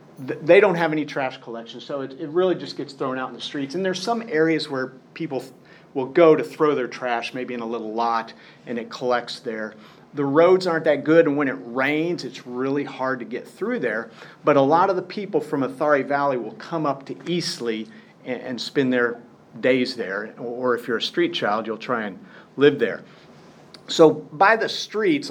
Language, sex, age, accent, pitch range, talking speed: English, male, 40-59, American, 130-165 Hz, 210 wpm